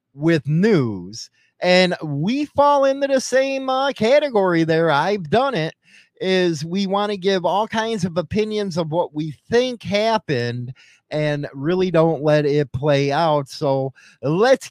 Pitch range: 135-195 Hz